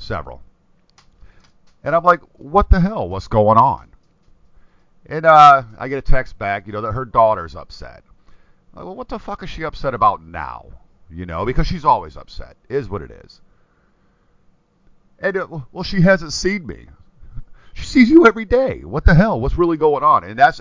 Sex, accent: male, American